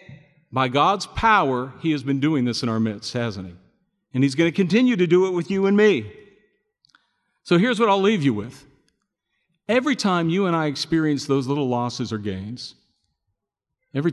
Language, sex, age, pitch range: English, male, 50-69, 105-145 Hz